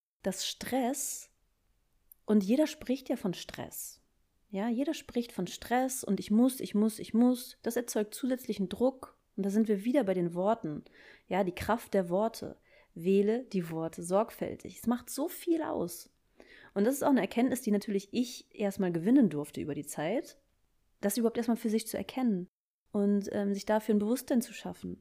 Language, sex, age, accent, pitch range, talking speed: German, female, 30-49, German, 195-235 Hz, 180 wpm